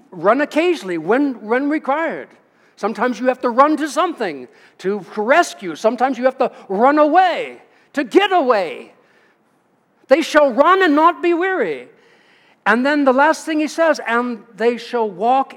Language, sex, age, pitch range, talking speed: English, male, 60-79, 210-300 Hz, 160 wpm